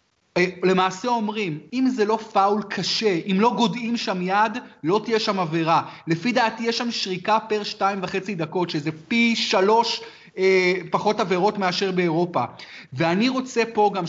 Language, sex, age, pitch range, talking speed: Hebrew, male, 30-49, 185-230 Hz, 160 wpm